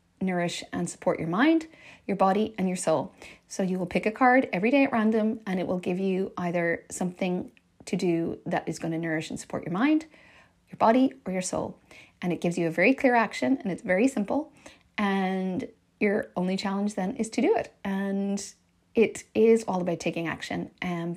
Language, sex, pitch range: English, female, 180-225 Hz